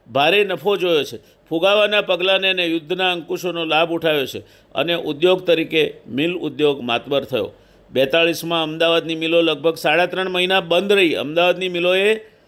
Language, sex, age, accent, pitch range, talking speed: Gujarati, male, 50-69, native, 165-190 Hz, 135 wpm